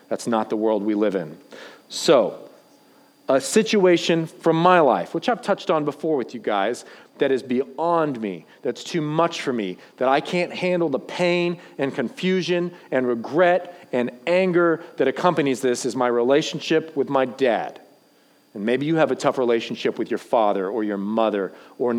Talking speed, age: 175 wpm, 40-59